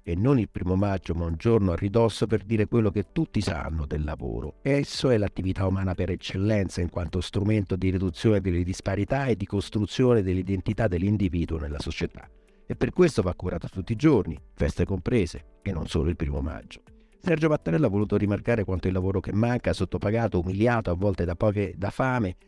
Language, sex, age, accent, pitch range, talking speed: Italian, male, 50-69, native, 90-110 Hz, 190 wpm